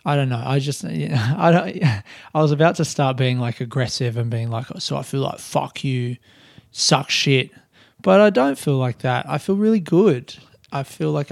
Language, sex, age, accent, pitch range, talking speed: English, male, 20-39, Australian, 130-155 Hz, 215 wpm